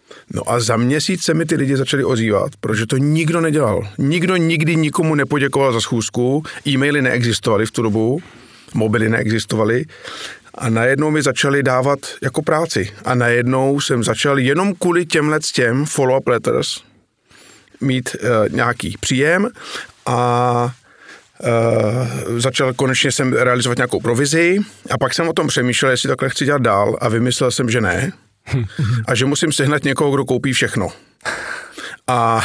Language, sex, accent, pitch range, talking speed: Czech, male, native, 120-145 Hz, 150 wpm